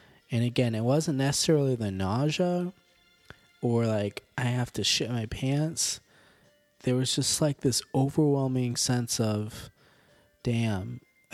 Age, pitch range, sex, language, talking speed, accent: 20-39, 110-135 Hz, male, English, 125 wpm, American